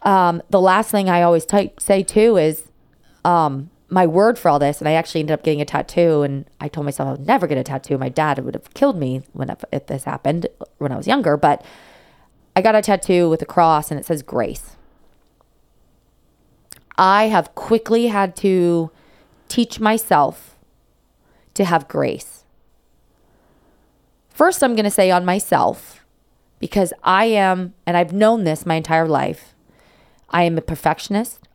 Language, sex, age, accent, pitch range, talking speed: English, female, 20-39, American, 155-205 Hz, 175 wpm